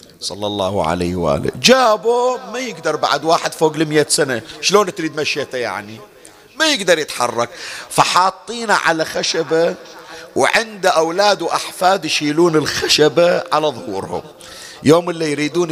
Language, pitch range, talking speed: Arabic, 145-200 Hz, 125 wpm